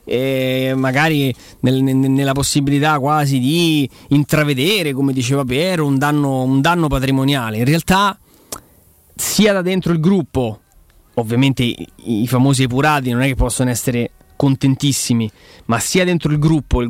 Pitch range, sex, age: 130-165 Hz, male, 30-49